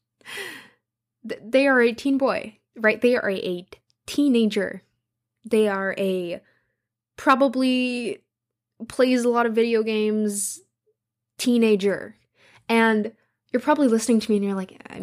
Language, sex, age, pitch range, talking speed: English, female, 10-29, 195-245 Hz, 130 wpm